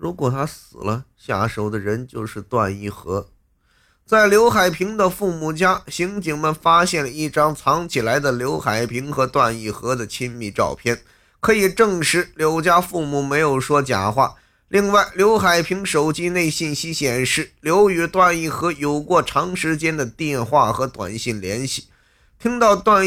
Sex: male